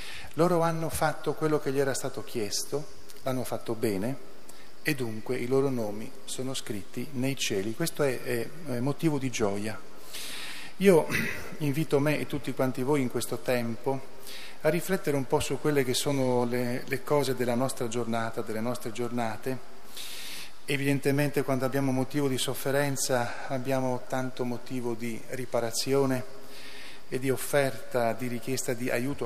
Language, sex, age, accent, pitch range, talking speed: Italian, male, 40-59, native, 120-145 Hz, 150 wpm